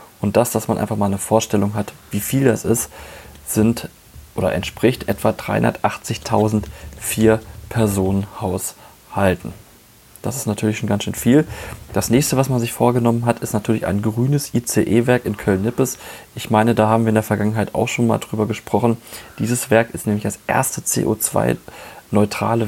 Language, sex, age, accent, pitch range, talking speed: German, male, 30-49, German, 105-115 Hz, 165 wpm